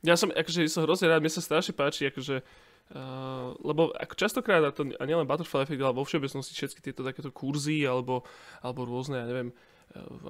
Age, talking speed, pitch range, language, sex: 20-39, 200 wpm, 130-155 Hz, Slovak, male